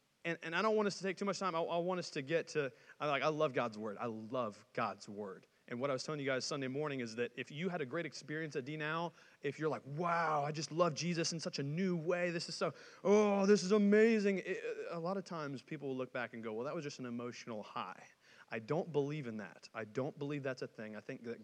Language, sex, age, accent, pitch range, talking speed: English, male, 30-49, American, 130-180 Hz, 275 wpm